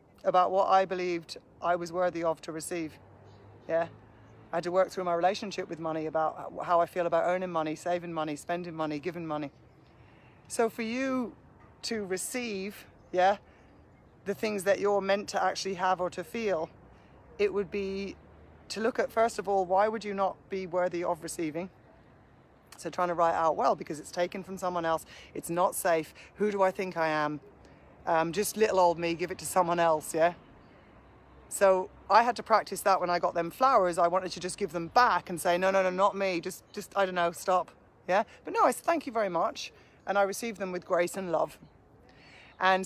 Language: English